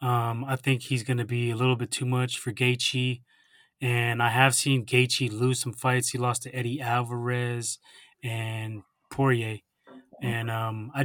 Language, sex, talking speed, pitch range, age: English, male, 175 wpm, 120-135 Hz, 20-39